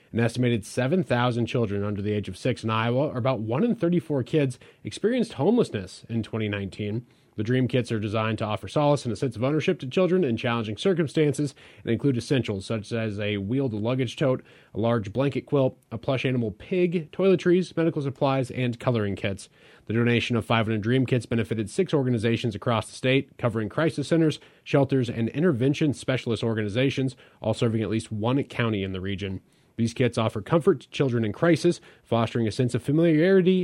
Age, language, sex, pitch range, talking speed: 30-49, English, male, 110-150 Hz, 185 wpm